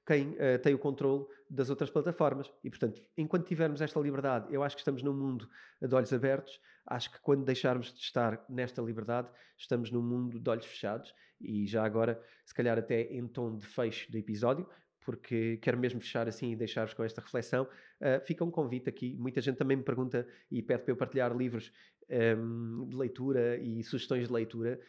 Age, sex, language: 20-39, male, Portuguese